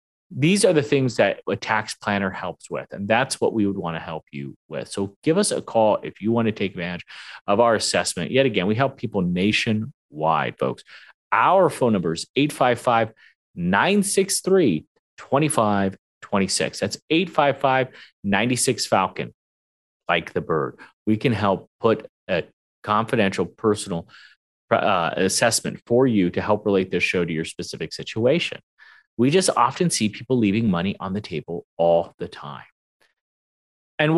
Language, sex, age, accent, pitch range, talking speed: English, male, 30-49, American, 100-155 Hz, 150 wpm